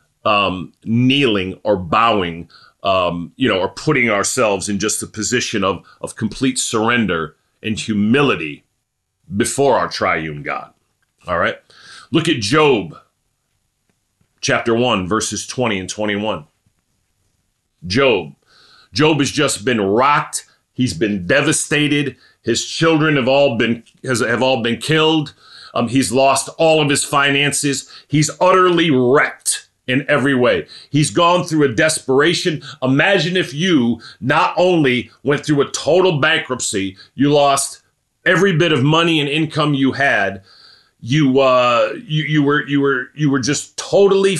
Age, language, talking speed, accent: 40-59, English, 140 wpm, American